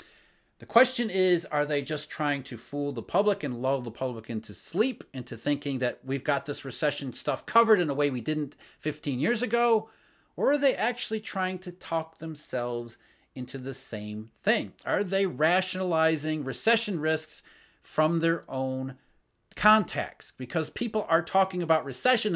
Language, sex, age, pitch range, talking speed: English, male, 40-59, 145-215 Hz, 165 wpm